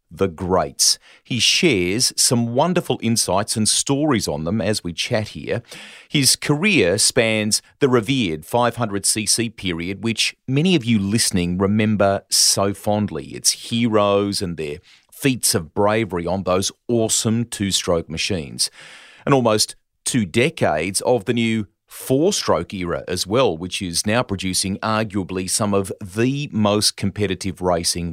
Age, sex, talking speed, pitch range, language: 40-59, male, 140 wpm, 90-115 Hz, English